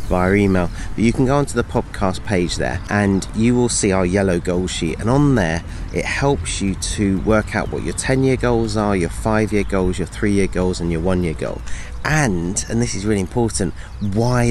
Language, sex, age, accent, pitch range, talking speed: English, male, 30-49, British, 90-120 Hz, 205 wpm